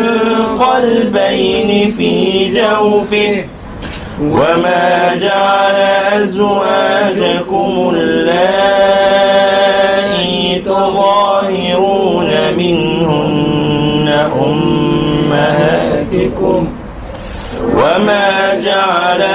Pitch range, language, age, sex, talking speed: 190-225 Hz, Arabic, 40-59, male, 35 wpm